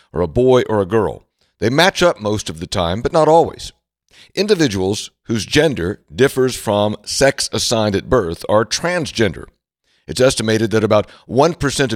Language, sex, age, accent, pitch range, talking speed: English, male, 60-79, American, 105-135 Hz, 160 wpm